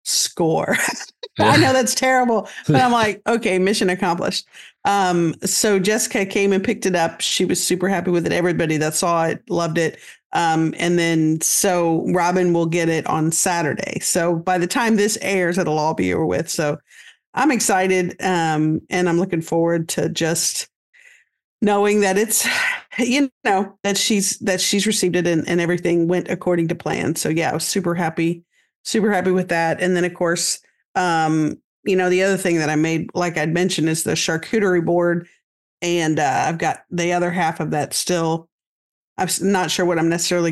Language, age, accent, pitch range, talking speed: English, 50-69, American, 165-195 Hz, 185 wpm